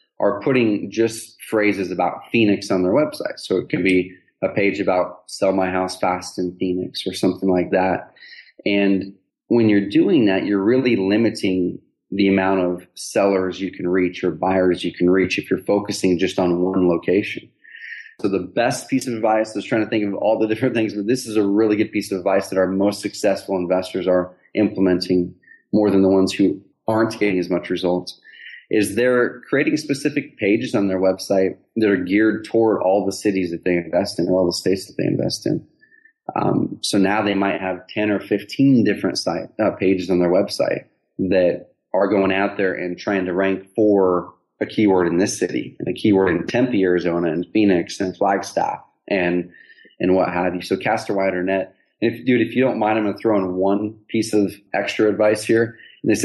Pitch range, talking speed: 90-110 Hz, 205 wpm